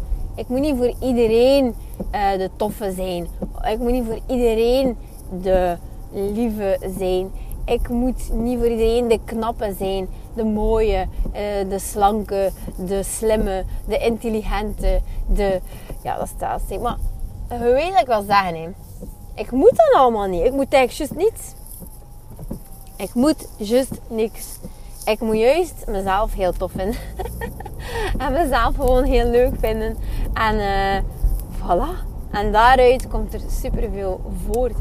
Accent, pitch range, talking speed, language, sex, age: Dutch, 195-255 Hz, 140 wpm, Dutch, female, 30-49